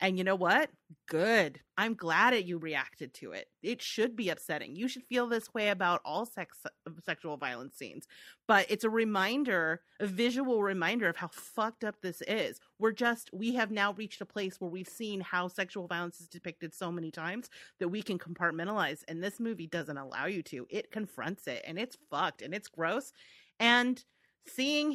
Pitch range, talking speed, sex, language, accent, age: 175-245 Hz, 195 wpm, female, English, American, 30-49